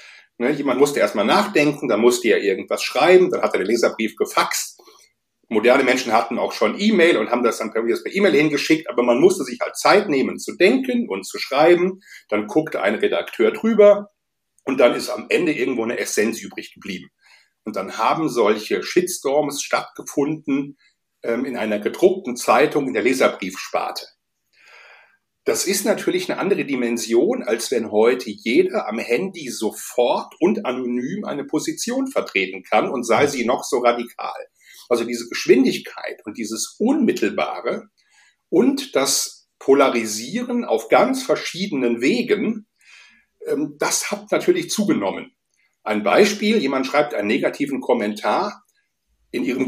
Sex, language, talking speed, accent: male, German, 145 wpm, German